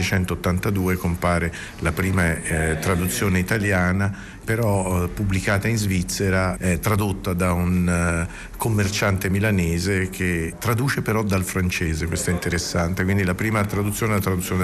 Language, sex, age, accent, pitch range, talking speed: Italian, male, 50-69, native, 90-110 Hz, 135 wpm